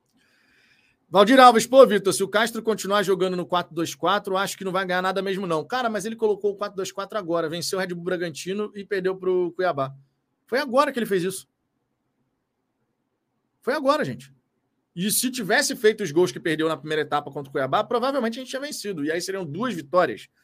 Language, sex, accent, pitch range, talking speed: Portuguese, male, Brazilian, 155-210 Hz, 205 wpm